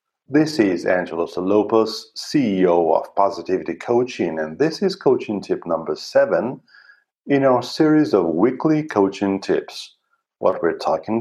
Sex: male